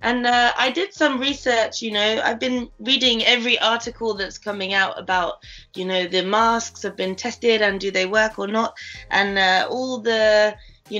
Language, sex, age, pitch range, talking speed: English, female, 20-39, 185-225 Hz, 190 wpm